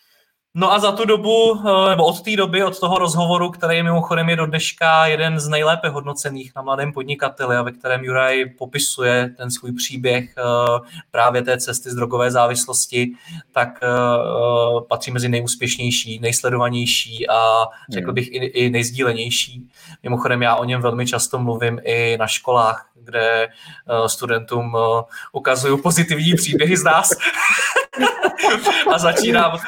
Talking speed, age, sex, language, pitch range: 140 wpm, 20-39, male, Czech, 120-170 Hz